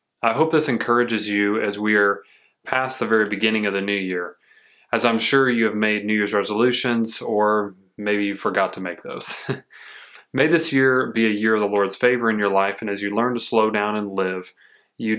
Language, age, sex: English, 20-39, male